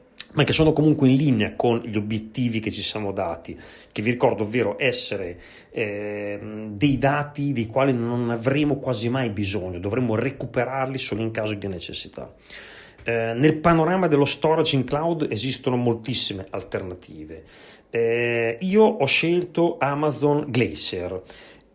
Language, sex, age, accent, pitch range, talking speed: Italian, male, 30-49, native, 110-150 Hz, 140 wpm